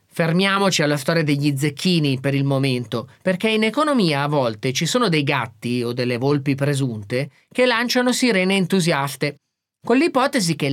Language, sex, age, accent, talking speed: Italian, male, 30-49, native, 155 wpm